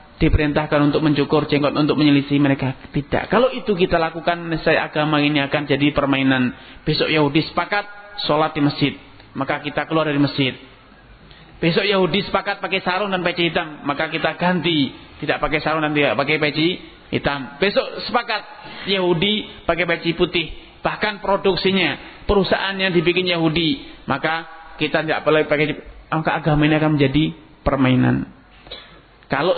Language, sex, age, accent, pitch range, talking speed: Indonesian, male, 30-49, native, 150-205 Hz, 140 wpm